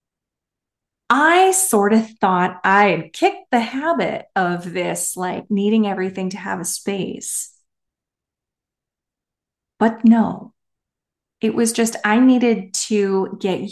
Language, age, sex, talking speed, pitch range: English, 30-49, female, 115 wpm, 180-225 Hz